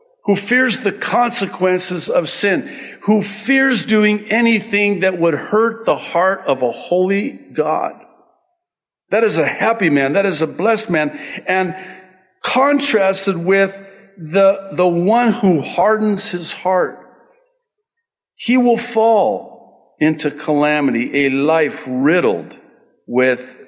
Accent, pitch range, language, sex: American, 120-200 Hz, English, male